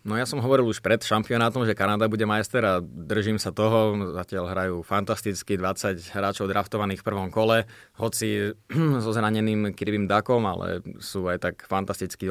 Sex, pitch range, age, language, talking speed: male, 95-110 Hz, 20-39, Slovak, 165 wpm